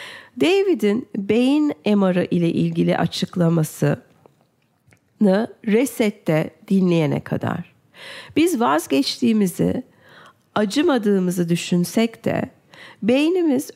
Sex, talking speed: female, 65 wpm